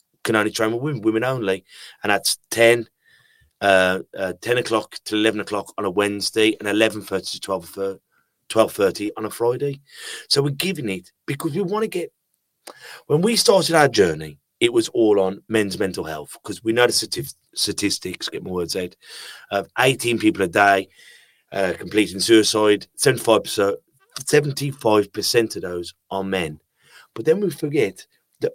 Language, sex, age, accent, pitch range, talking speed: English, male, 30-49, British, 105-150 Hz, 165 wpm